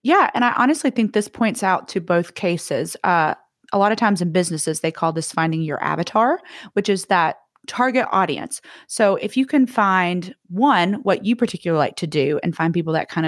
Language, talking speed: English, 210 wpm